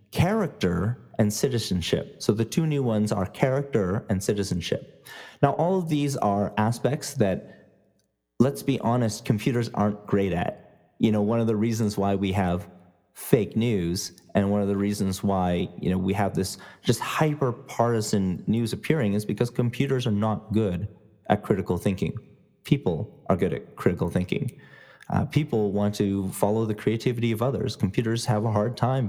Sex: male